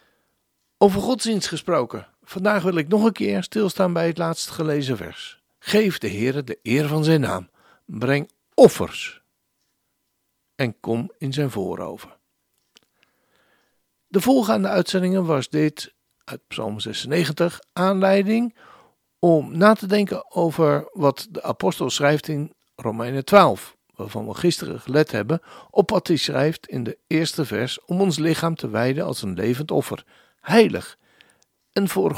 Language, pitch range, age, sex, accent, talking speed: Dutch, 145-200 Hz, 60-79, male, Dutch, 140 wpm